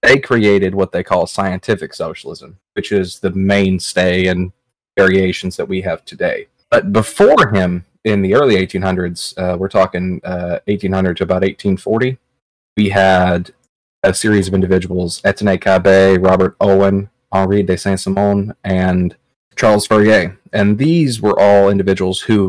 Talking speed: 140 wpm